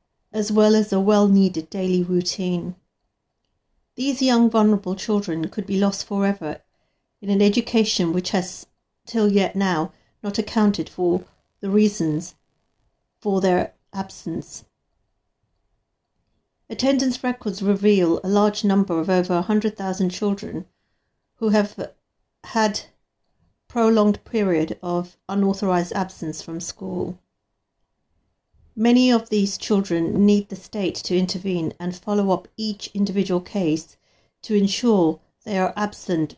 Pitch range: 175-210 Hz